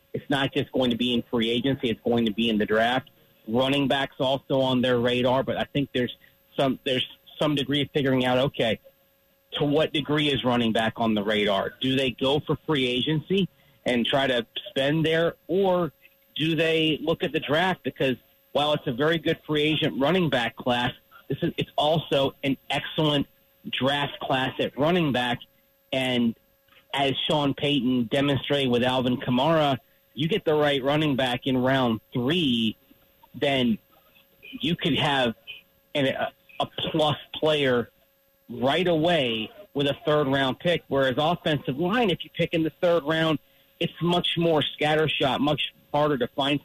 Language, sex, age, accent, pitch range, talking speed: English, male, 40-59, American, 125-155 Hz, 170 wpm